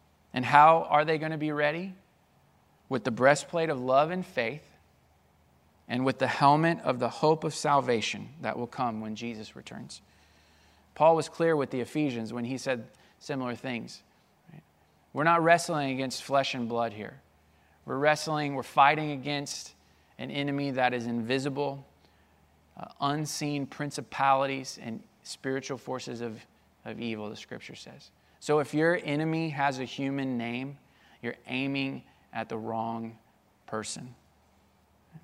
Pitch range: 110-140 Hz